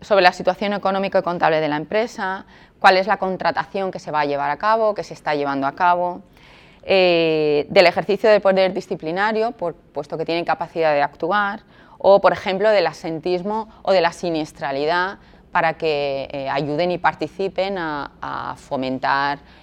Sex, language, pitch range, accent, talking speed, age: female, Spanish, 150-195 Hz, Spanish, 175 wpm, 20-39